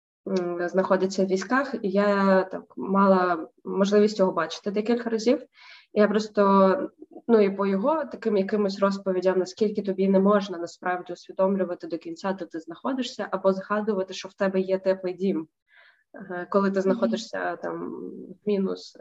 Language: Ukrainian